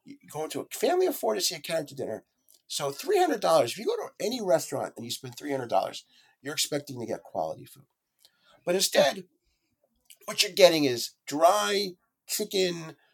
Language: English